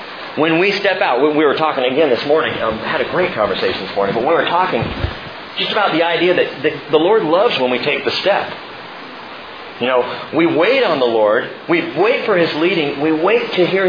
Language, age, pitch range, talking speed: English, 40-59, 140-195 Hz, 220 wpm